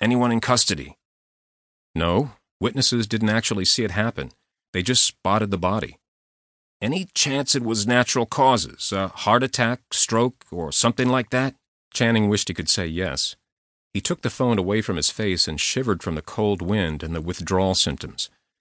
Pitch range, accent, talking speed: 90-120 Hz, American, 170 wpm